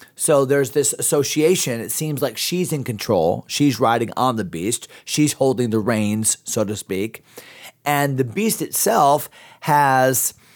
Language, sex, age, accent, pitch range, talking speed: English, male, 40-59, American, 125-155 Hz, 155 wpm